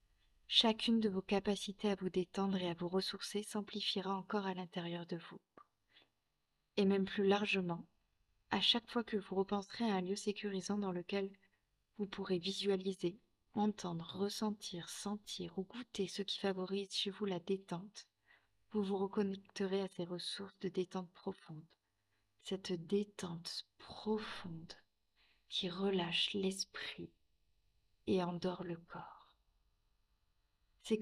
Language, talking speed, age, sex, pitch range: French, 130 wpm, 30-49, female, 170-200 Hz